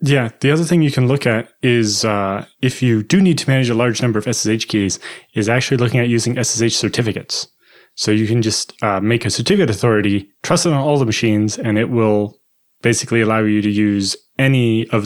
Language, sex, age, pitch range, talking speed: English, male, 20-39, 105-125 Hz, 215 wpm